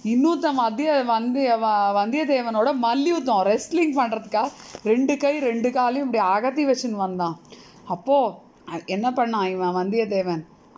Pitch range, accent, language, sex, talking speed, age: 210-275 Hz, native, Tamil, female, 110 wpm, 30-49